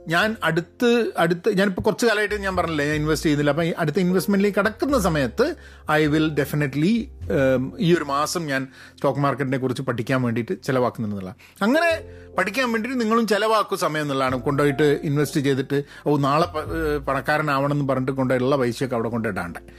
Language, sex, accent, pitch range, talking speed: Malayalam, male, native, 125-160 Hz, 140 wpm